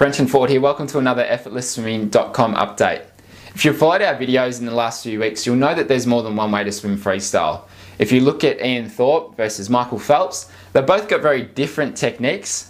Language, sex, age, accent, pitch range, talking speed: English, male, 20-39, Australian, 110-135 Hz, 215 wpm